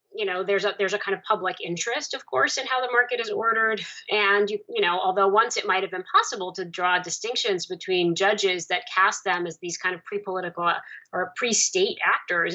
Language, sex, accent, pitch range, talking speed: English, female, American, 175-245 Hz, 215 wpm